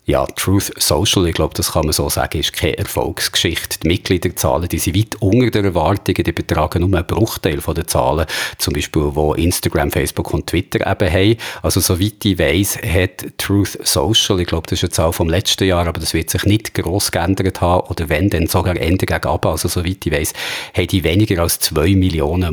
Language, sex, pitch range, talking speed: German, male, 85-105 Hz, 210 wpm